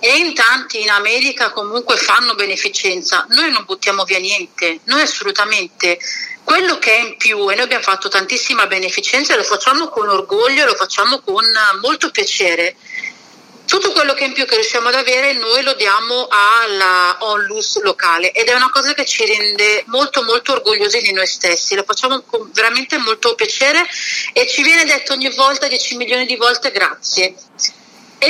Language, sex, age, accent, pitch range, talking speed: Italian, female, 40-59, native, 200-290 Hz, 175 wpm